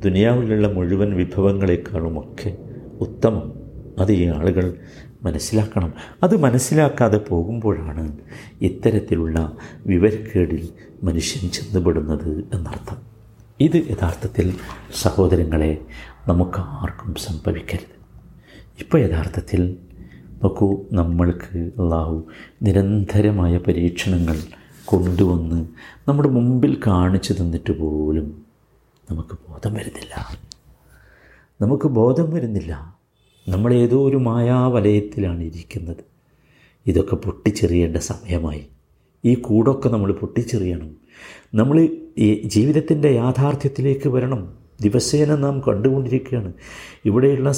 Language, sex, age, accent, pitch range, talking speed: Malayalam, male, 50-69, native, 85-130 Hz, 70 wpm